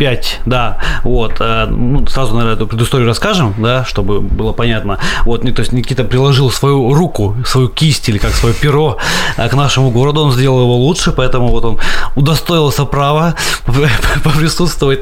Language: Russian